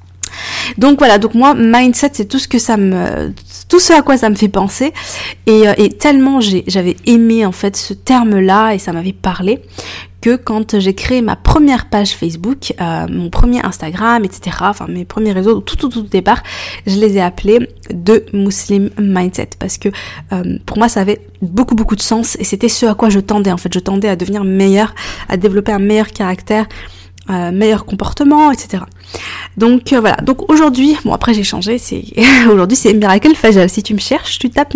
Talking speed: 180 wpm